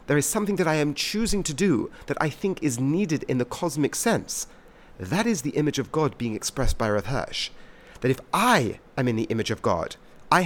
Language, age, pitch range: English, 40-59, 125-175 Hz